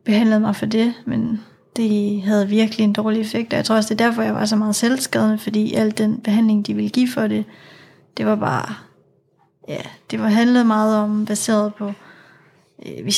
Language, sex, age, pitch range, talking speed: Danish, female, 30-49, 210-230 Hz, 195 wpm